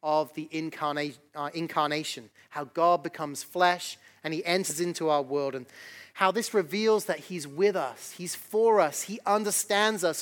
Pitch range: 145-180 Hz